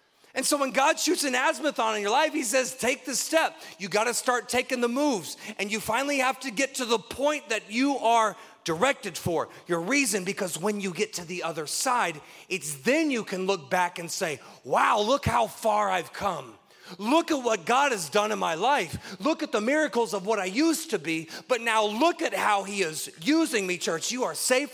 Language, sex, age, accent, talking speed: English, male, 30-49, American, 225 wpm